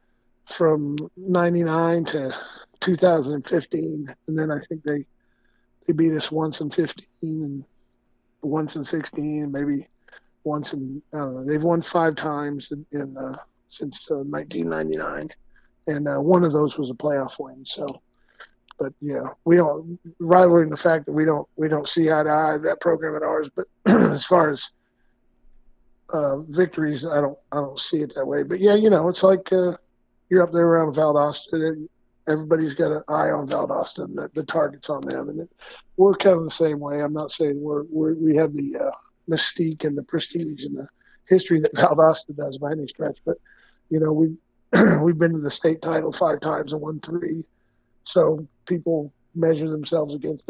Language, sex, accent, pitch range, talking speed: English, male, American, 145-165 Hz, 180 wpm